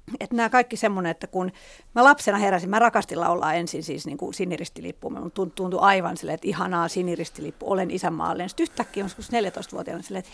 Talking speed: 175 wpm